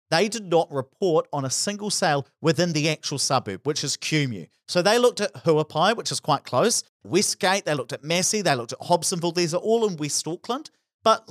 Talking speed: 210 wpm